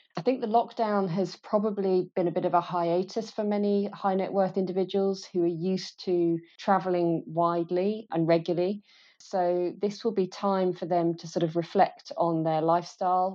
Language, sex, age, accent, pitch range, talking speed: English, female, 30-49, British, 165-185 Hz, 180 wpm